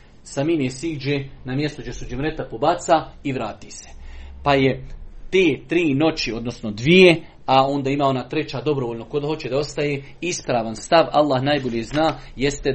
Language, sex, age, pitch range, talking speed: Croatian, male, 40-59, 125-175 Hz, 160 wpm